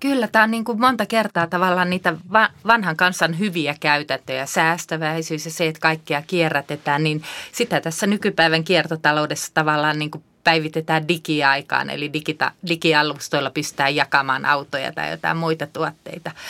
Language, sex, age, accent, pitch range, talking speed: Finnish, female, 30-49, native, 150-180 Hz, 140 wpm